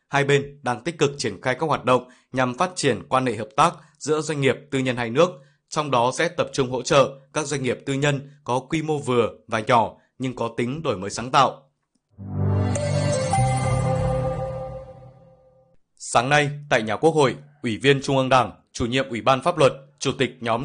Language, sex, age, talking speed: Vietnamese, male, 20-39, 200 wpm